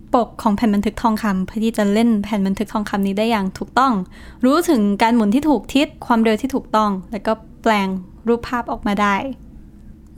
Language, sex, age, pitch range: Thai, female, 10-29, 210-255 Hz